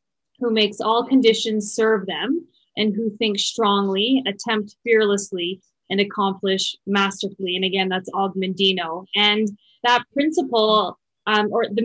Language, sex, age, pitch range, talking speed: English, female, 20-39, 195-225 Hz, 125 wpm